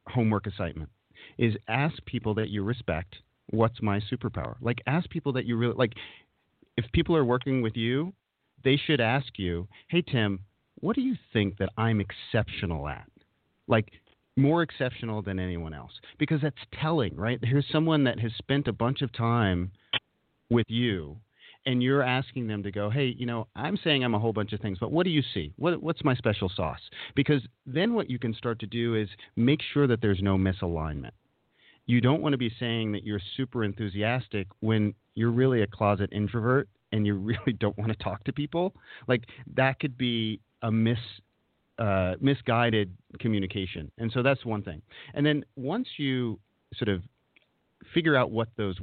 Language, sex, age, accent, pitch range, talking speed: English, male, 40-59, American, 100-130 Hz, 185 wpm